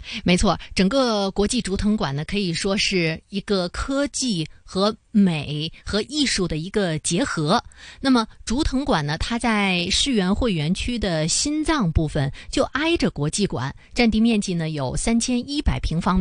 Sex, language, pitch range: female, Chinese, 160-230 Hz